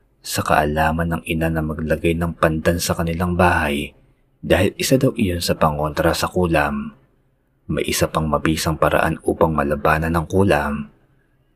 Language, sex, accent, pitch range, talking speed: Filipino, male, native, 75-90 Hz, 145 wpm